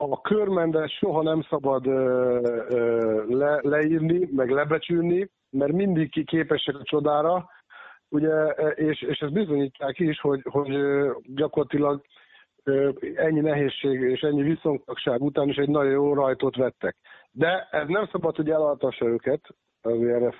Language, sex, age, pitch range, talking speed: Hungarian, male, 50-69, 135-170 Hz, 125 wpm